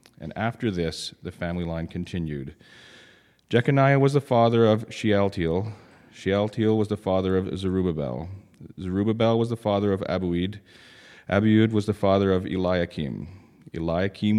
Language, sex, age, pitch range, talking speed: English, male, 30-49, 85-105 Hz, 135 wpm